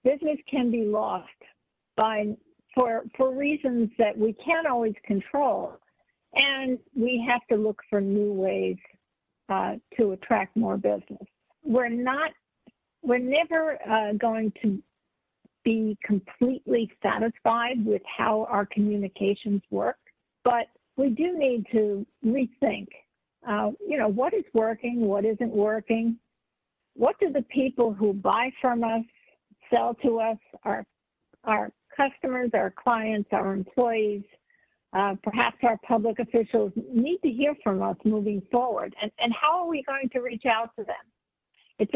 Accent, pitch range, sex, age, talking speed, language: American, 210-260 Hz, female, 60-79, 140 wpm, English